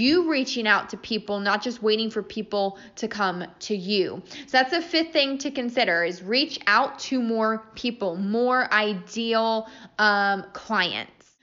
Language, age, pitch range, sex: English, 10-29, 205-260 Hz, female